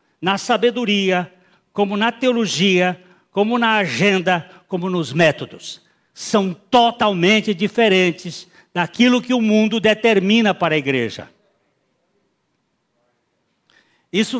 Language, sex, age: Portuguese, male, 60-79